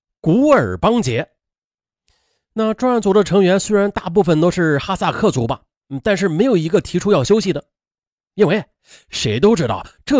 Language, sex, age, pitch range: Chinese, male, 30-49, 145-220 Hz